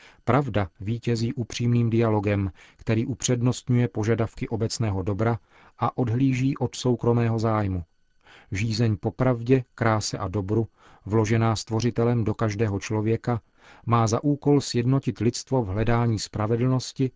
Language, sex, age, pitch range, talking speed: Czech, male, 40-59, 105-120 Hz, 115 wpm